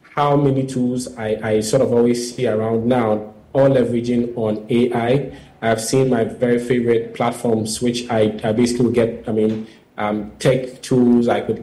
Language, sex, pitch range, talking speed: English, male, 115-130 Hz, 175 wpm